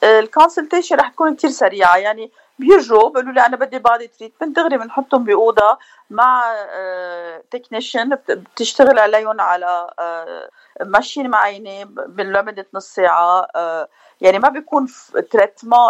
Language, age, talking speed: Arabic, 40-59, 125 wpm